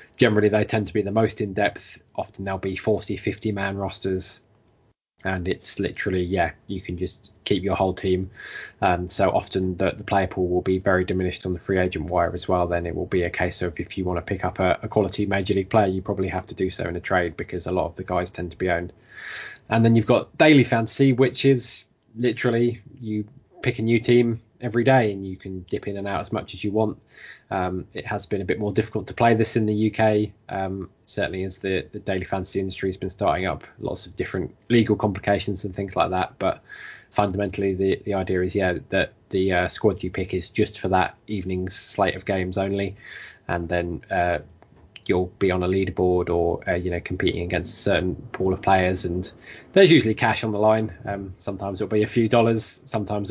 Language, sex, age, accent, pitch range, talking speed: English, male, 20-39, British, 95-110 Hz, 225 wpm